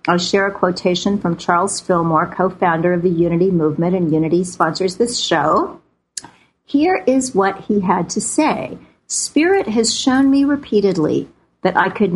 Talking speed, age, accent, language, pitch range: 160 wpm, 50-69, American, English, 180-240 Hz